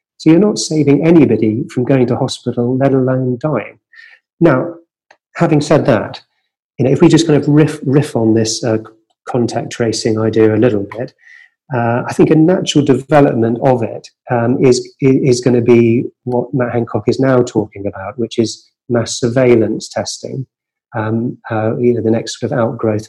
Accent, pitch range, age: British, 115-140 Hz, 30-49